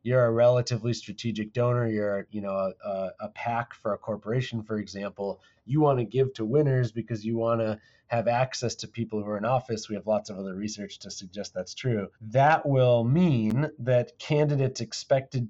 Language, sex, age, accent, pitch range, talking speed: English, male, 30-49, American, 105-125 Hz, 185 wpm